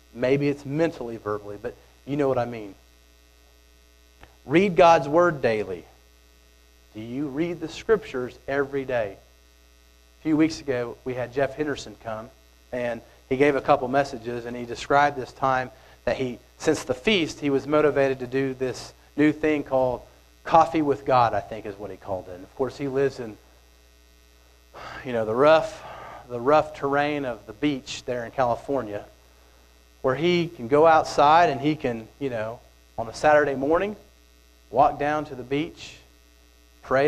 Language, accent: English, American